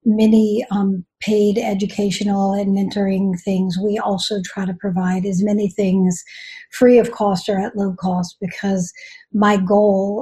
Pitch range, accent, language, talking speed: 195-225 Hz, American, English, 145 wpm